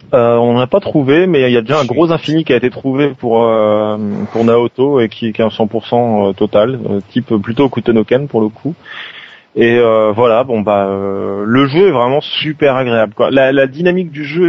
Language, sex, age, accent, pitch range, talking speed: French, male, 30-49, French, 115-140 Hz, 205 wpm